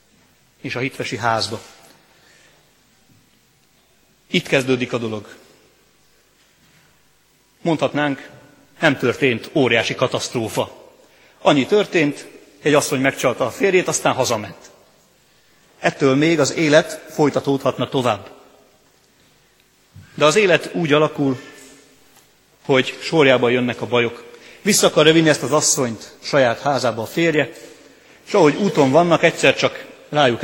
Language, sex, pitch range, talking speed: Hungarian, male, 125-150 Hz, 105 wpm